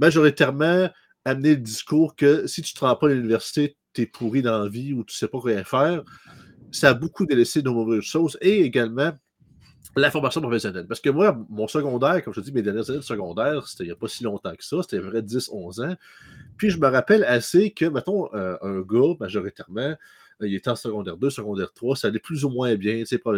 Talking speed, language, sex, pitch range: 230 wpm, French, male, 110-145 Hz